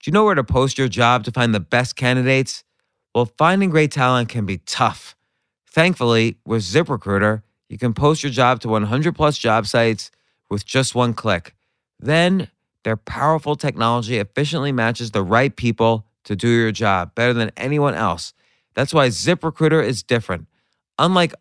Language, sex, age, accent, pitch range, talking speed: English, male, 30-49, American, 115-145 Hz, 170 wpm